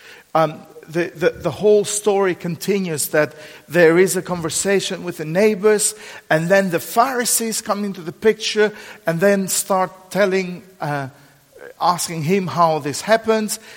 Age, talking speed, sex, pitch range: 50-69, 145 wpm, male, 150-205 Hz